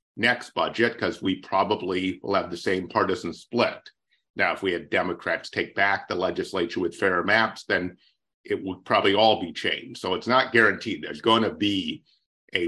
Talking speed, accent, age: 185 wpm, American, 50-69